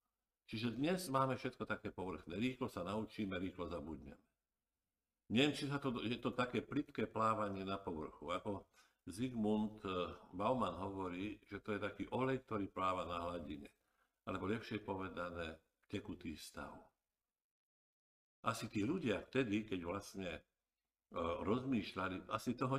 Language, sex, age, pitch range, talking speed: Slovak, male, 50-69, 95-120 Hz, 130 wpm